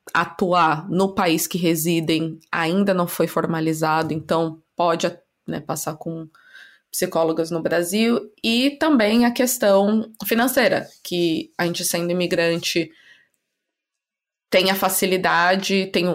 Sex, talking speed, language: female, 115 wpm, Portuguese